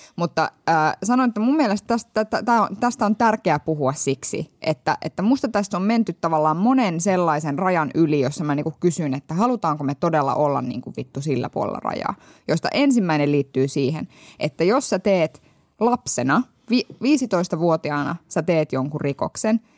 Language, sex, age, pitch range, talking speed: Finnish, female, 20-39, 150-230 Hz, 145 wpm